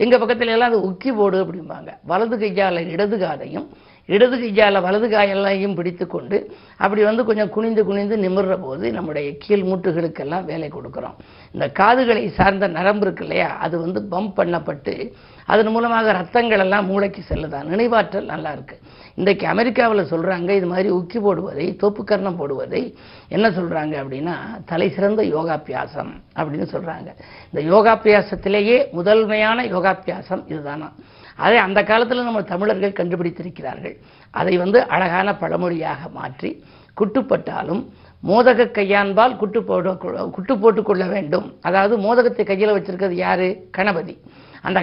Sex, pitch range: female, 180-215 Hz